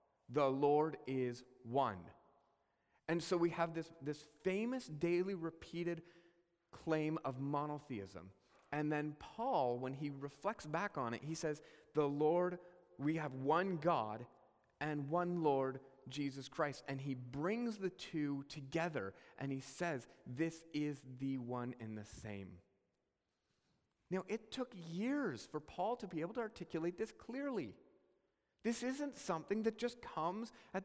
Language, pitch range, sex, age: English, 145-200 Hz, male, 30-49